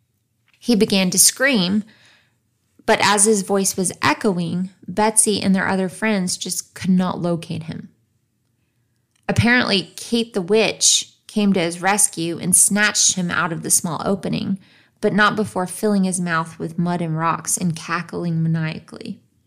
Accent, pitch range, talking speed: American, 175-210 Hz, 150 wpm